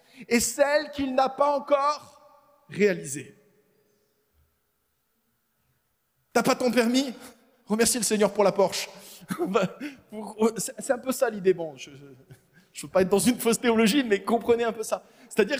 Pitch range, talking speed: 180-245 Hz, 145 wpm